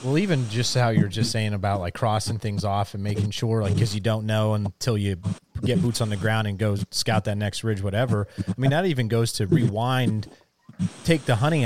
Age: 30-49